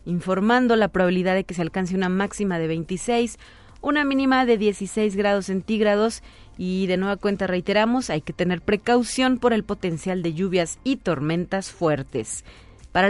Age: 40-59